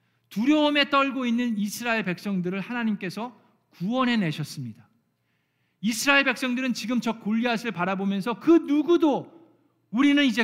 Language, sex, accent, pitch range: Korean, male, native, 185-265 Hz